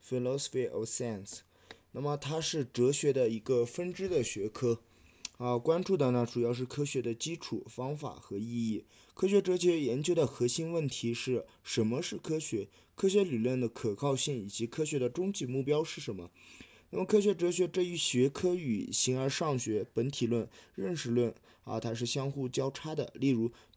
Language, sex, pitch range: Chinese, male, 115-160 Hz